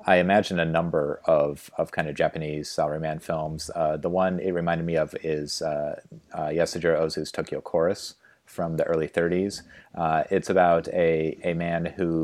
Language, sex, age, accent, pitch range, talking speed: English, male, 30-49, American, 75-85 Hz, 175 wpm